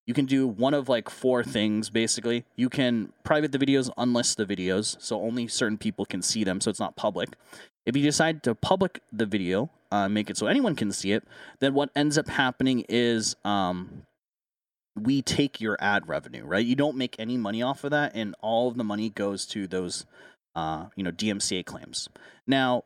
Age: 30-49